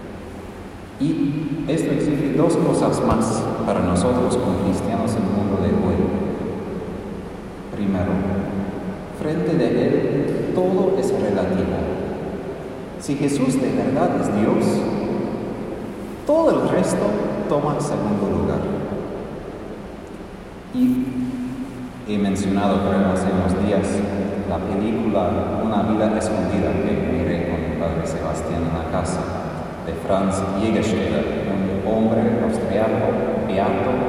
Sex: male